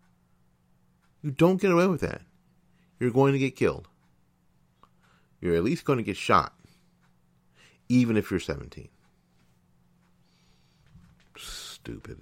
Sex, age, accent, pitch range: male, 50-69, American, 70-105 Hz